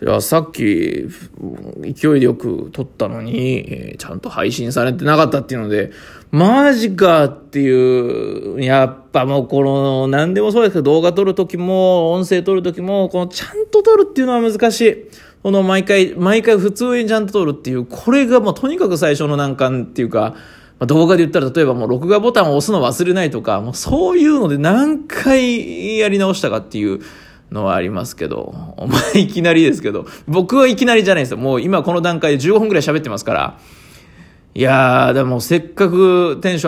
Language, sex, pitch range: Japanese, male, 135-210 Hz